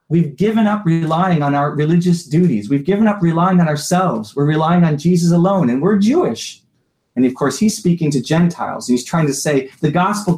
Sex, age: male, 30-49